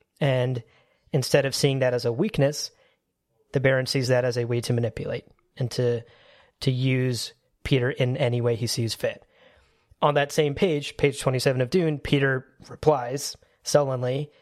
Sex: male